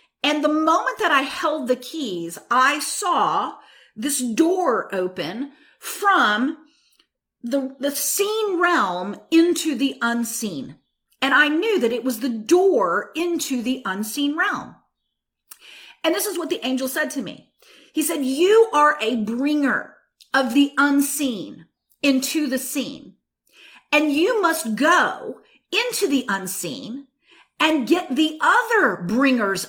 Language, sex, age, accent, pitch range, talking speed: English, female, 40-59, American, 255-340 Hz, 135 wpm